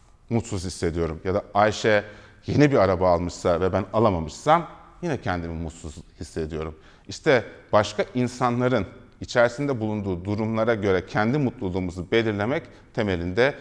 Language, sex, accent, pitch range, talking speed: Turkish, male, native, 85-120 Hz, 120 wpm